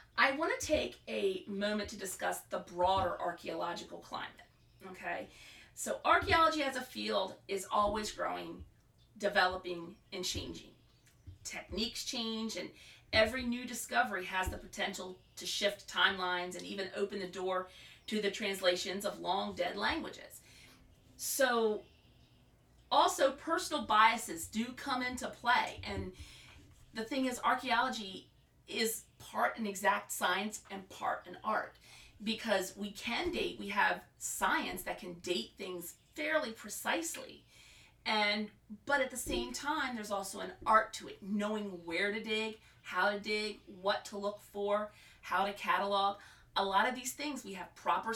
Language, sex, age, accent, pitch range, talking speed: English, female, 40-59, American, 190-245 Hz, 145 wpm